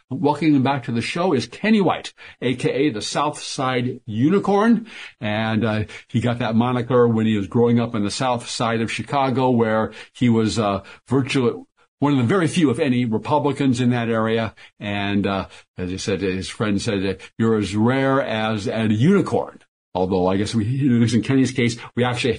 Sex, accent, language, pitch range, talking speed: male, American, English, 110-145 Hz, 190 wpm